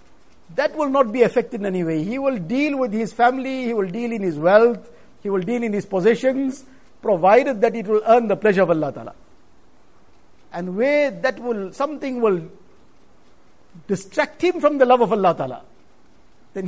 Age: 50-69